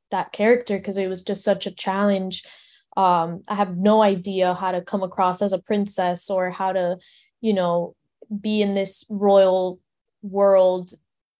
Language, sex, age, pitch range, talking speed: English, female, 10-29, 185-210 Hz, 165 wpm